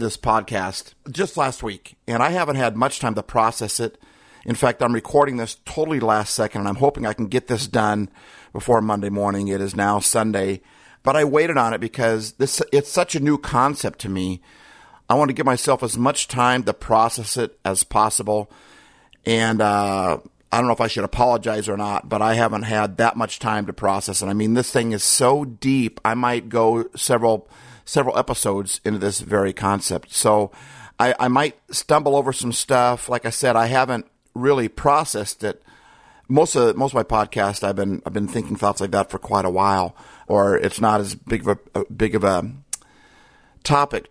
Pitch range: 105-125 Hz